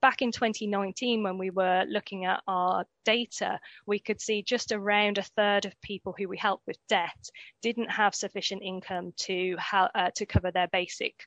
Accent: British